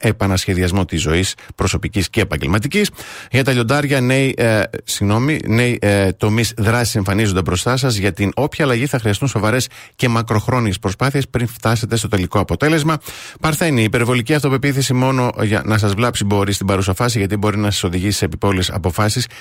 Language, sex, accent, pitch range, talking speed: Greek, male, native, 100-125 Hz, 165 wpm